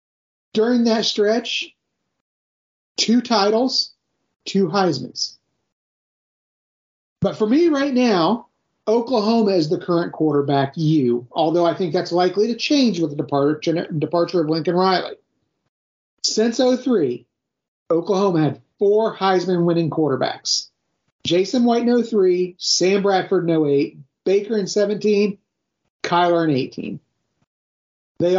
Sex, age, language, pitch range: male, 40-59, English, 165-210 Hz